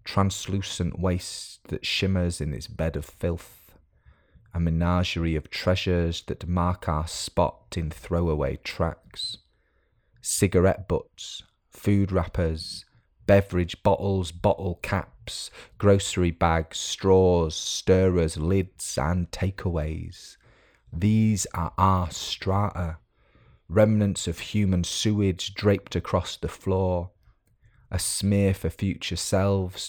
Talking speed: 105 wpm